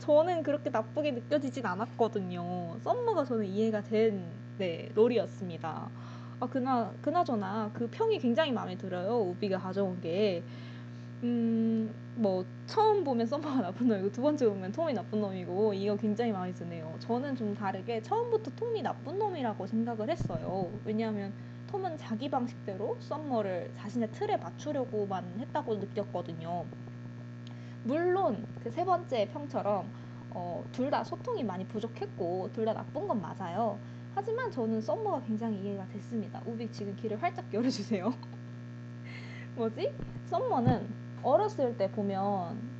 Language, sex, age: Korean, female, 20-39